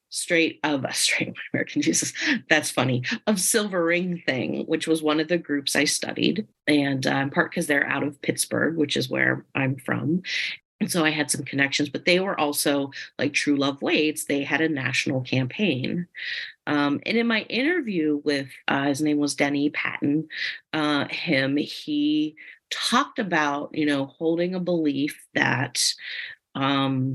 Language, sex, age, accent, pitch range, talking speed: English, female, 30-49, American, 135-160 Hz, 175 wpm